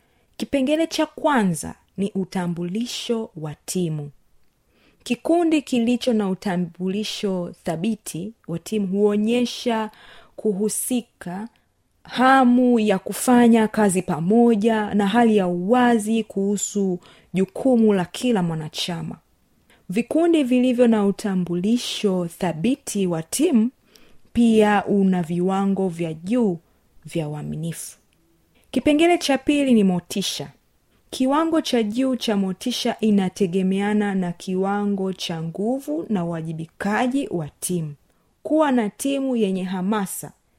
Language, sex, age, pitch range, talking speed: Swahili, female, 30-49, 180-245 Hz, 100 wpm